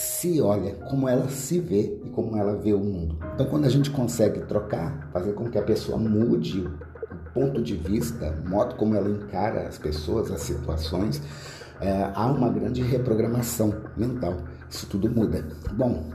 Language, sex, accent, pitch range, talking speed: Portuguese, male, Brazilian, 90-120 Hz, 175 wpm